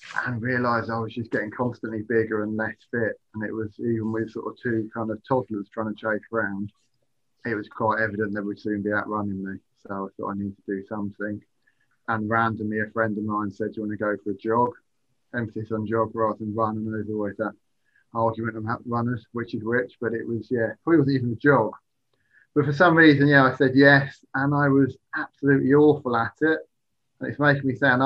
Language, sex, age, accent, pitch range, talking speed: English, male, 30-49, British, 110-120 Hz, 225 wpm